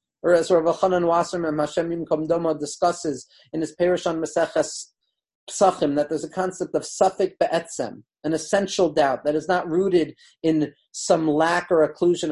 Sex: male